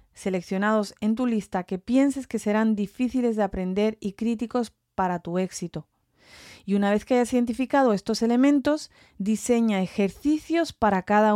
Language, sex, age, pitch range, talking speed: English, female, 30-49, 190-230 Hz, 150 wpm